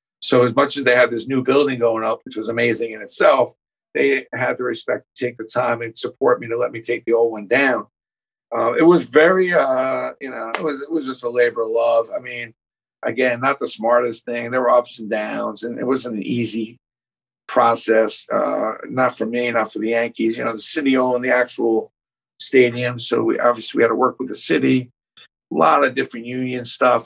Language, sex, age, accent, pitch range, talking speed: English, male, 50-69, American, 115-130 Hz, 225 wpm